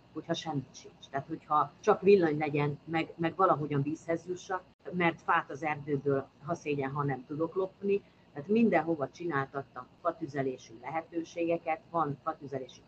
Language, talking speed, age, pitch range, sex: Hungarian, 140 wpm, 40-59, 135-165 Hz, female